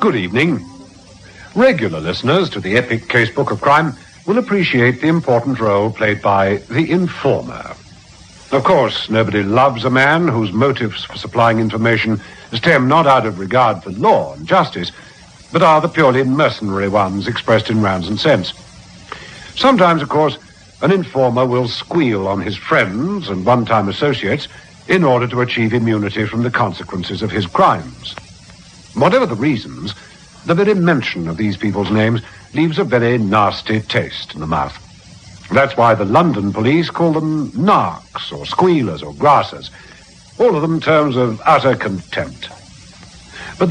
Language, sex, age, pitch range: English, male, 60-79, 105-155 Hz